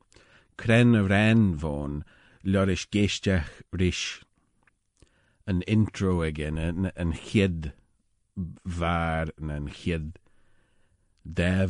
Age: 40-59